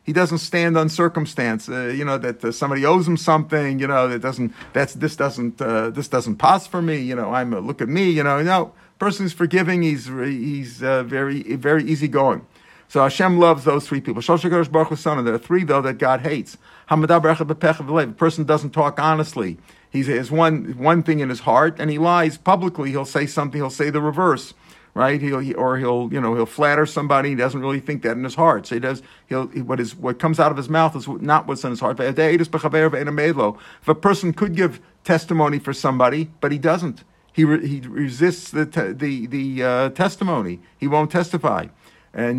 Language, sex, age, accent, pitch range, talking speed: English, male, 50-69, American, 130-160 Hz, 210 wpm